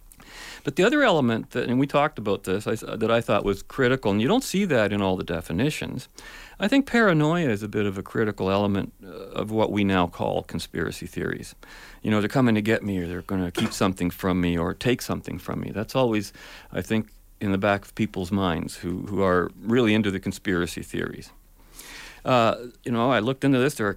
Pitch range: 100-130 Hz